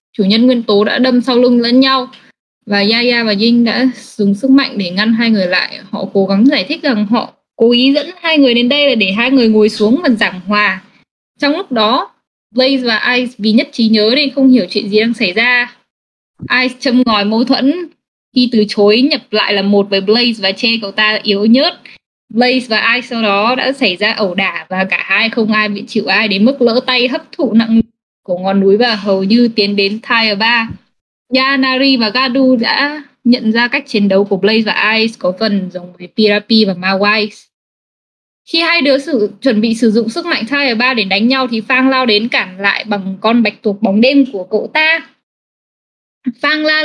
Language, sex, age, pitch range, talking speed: English, female, 10-29, 210-260 Hz, 215 wpm